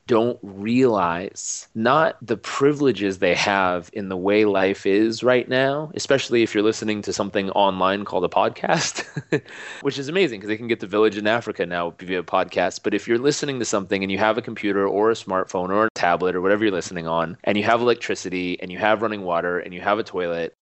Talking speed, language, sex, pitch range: 215 wpm, English, male, 95-115 Hz